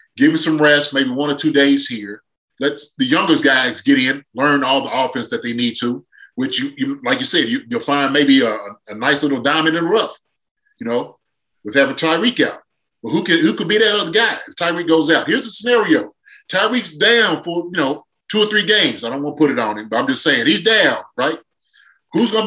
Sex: male